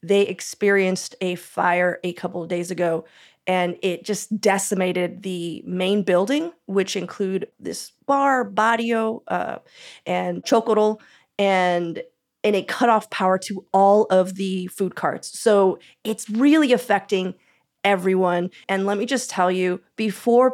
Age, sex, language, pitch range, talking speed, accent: 30-49, female, English, 185-225 Hz, 135 wpm, American